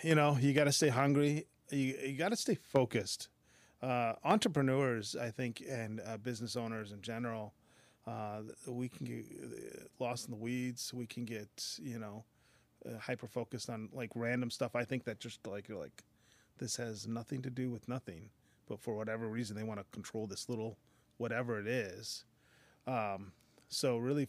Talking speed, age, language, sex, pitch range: 180 wpm, 30-49, English, male, 110-125 Hz